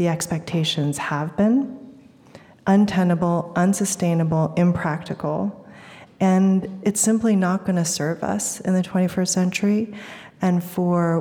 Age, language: 30-49, English